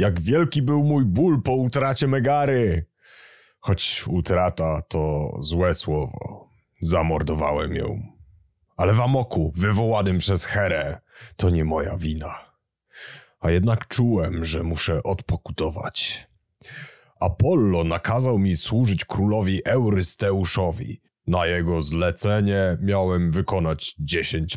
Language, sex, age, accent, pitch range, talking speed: Polish, male, 30-49, native, 80-105 Hz, 105 wpm